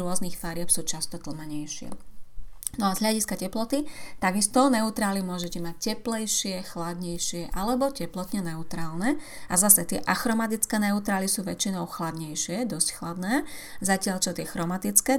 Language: Slovak